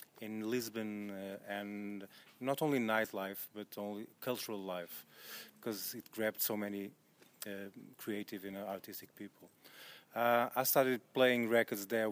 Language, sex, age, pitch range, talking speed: English, male, 30-49, 105-120 Hz, 145 wpm